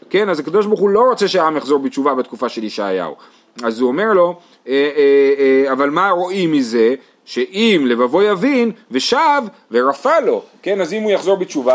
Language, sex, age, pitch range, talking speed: Hebrew, male, 30-49, 130-200 Hz, 190 wpm